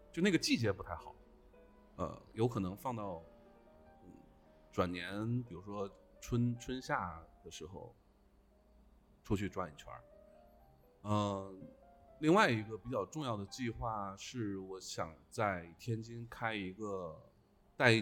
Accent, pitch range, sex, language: native, 95-115 Hz, male, Chinese